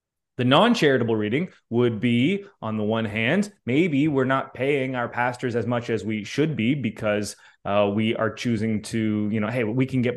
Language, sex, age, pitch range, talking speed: English, male, 20-39, 115-150 Hz, 195 wpm